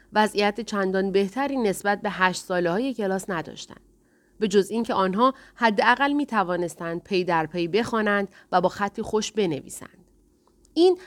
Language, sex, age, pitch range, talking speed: Persian, female, 30-49, 180-230 Hz, 135 wpm